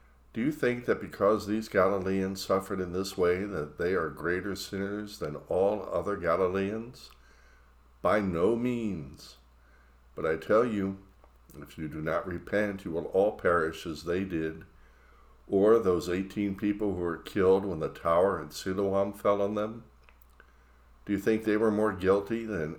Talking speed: 165 wpm